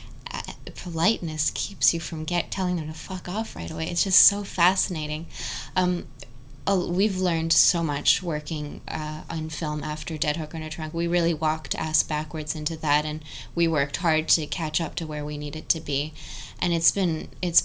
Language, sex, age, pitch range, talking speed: English, female, 20-39, 150-175 Hz, 190 wpm